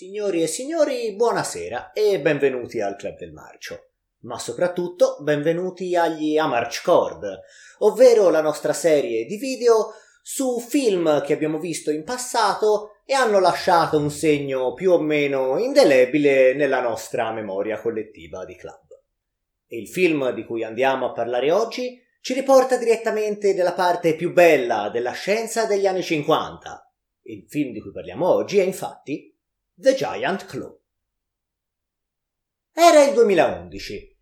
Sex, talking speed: male, 135 wpm